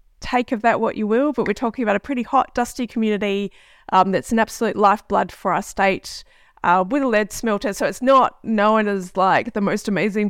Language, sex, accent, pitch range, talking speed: English, female, Australian, 200-250 Hz, 215 wpm